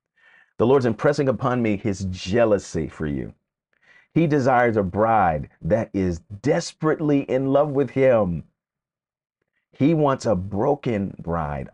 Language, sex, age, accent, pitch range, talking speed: English, male, 40-59, American, 105-145 Hz, 130 wpm